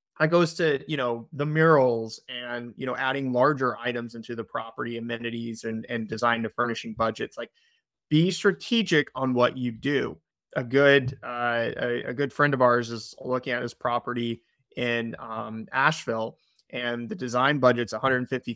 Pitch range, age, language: 120-155 Hz, 20-39, English